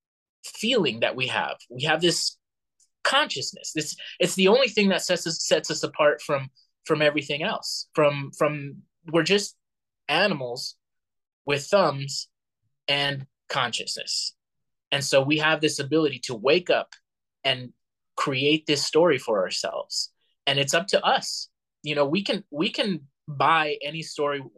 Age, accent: 20-39, American